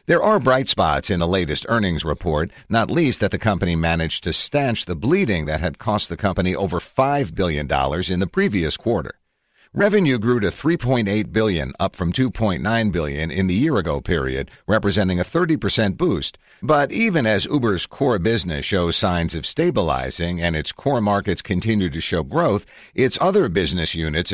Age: 50-69